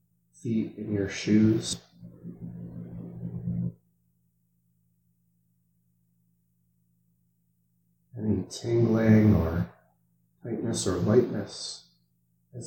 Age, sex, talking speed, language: 30-49, male, 50 wpm, English